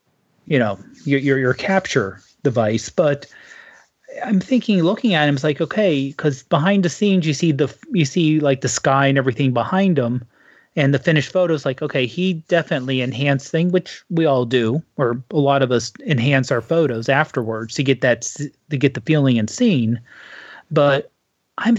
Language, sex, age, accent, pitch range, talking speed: English, male, 30-49, American, 130-165 Hz, 185 wpm